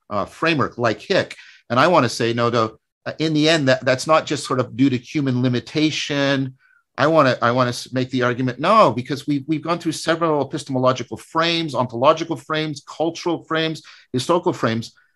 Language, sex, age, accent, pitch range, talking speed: English, male, 50-69, American, 120-155 Hz, 200 wpm